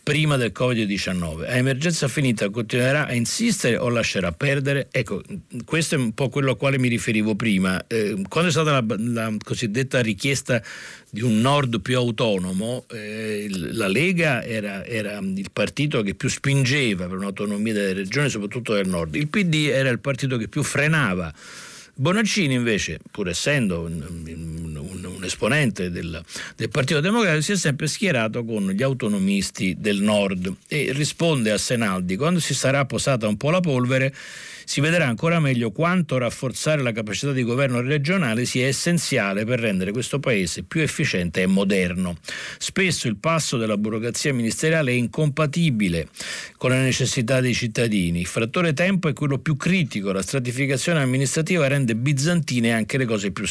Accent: native